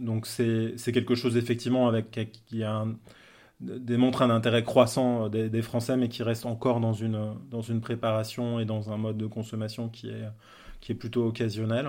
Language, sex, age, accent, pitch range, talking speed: French, male, 20-39, French, 110-125 Hz, 195 wpm